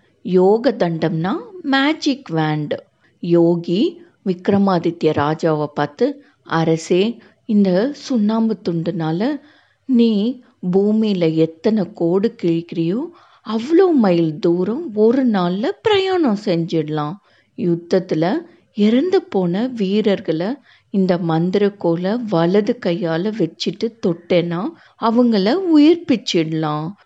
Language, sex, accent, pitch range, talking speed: Tamil, female, native, 170-245 Hz, 80 wpm